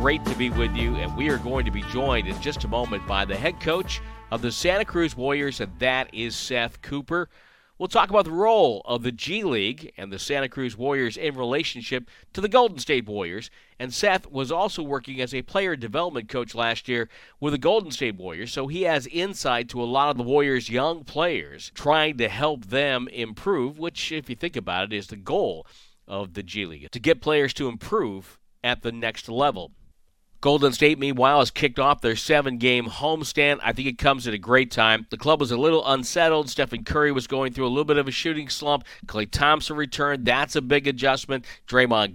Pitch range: 110-140 Hz